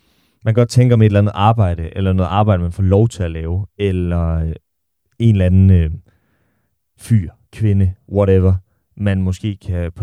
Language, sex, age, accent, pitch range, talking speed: Danish, male, 30-49, native, 95-115 Hz, 185 wpm